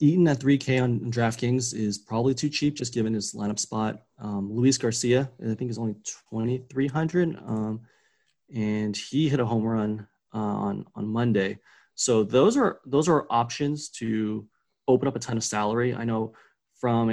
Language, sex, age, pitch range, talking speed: English, male, 20-39, 110-130 Hz, 170 wpm